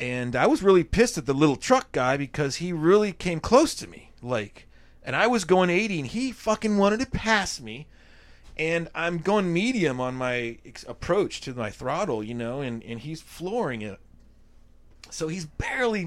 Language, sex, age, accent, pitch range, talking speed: English, male, 30-49, American, 125-170 Hz, 185 wpm